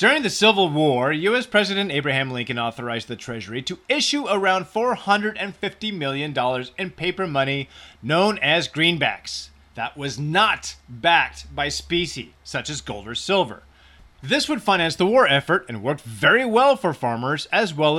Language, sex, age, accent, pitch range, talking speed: English, male, 30-49, American, 130-205 Hz, 155 wpm